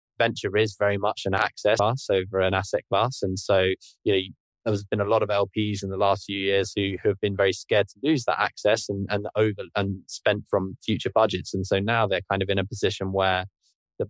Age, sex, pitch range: 20-39, male, 95-105 Hz